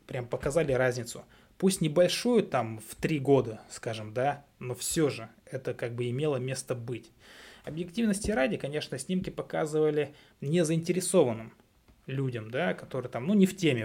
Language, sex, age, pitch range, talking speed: Russian, male, 20-39, 120-155 Hz, 145 wpm